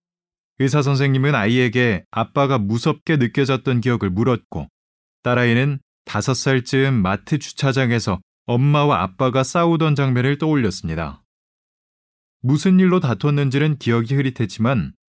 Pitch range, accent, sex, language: 115-155 Hz, native, male, Korean